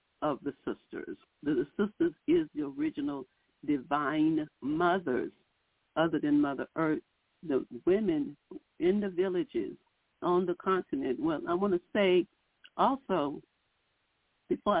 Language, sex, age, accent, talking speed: English, female, 60-79, American, 120 wpm